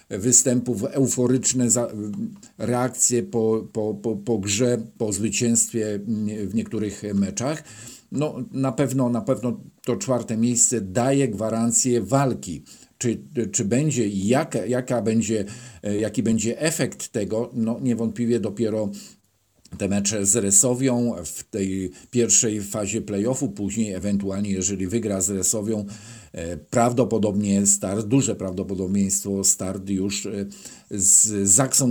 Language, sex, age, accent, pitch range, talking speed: Polish, male, 50-69, native, 100-120 Hz, 115 wpm